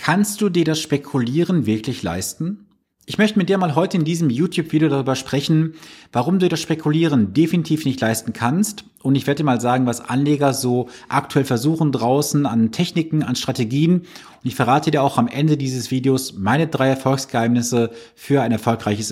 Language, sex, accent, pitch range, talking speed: German, male, German, 120-160 Hz, 180 wpm